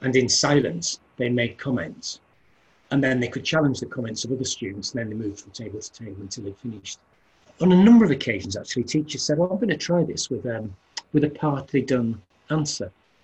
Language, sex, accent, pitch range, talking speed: English, male, British, 105-140 Hz, 215 wpm